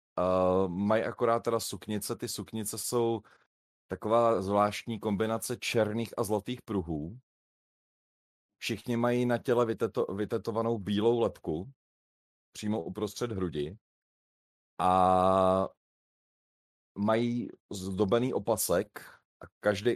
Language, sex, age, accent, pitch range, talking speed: Czech, male, 30-49, native, 95-115 Hz, 95 wpm